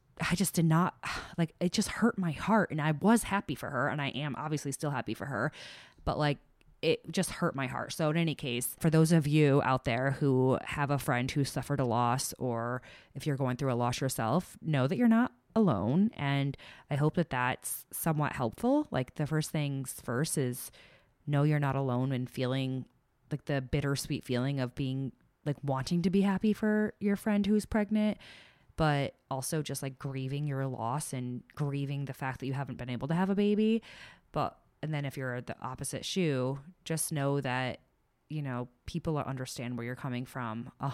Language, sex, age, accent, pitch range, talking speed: English, female, 20-39, American, 130-165 Hz, 200 wpm